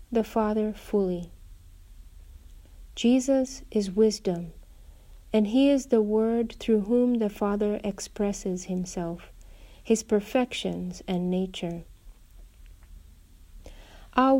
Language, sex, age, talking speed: English, female, 50-69, 90 wpm